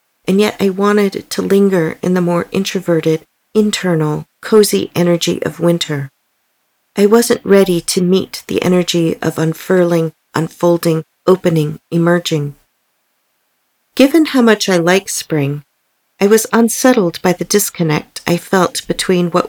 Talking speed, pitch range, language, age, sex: 130 wpm, 160-205 Hz, English, 40-59, female